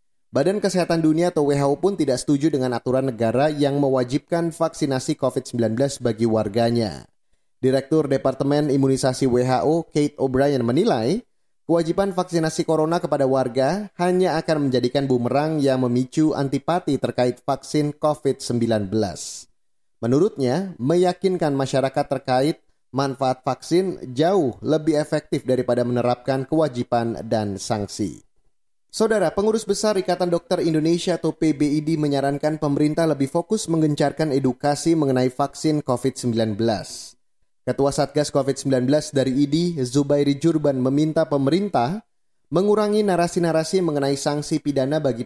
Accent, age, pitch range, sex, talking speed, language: native, 30-49, 130-160 Hz, male, 115 wpm, Indonesian